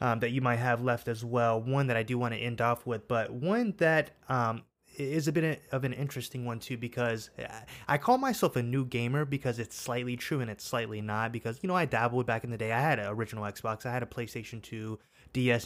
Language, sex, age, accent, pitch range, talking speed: English, male, 20-39, American, 110-130 Hz, 245 wpm